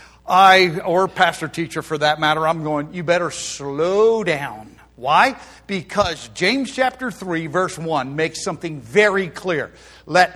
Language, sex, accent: English, male, American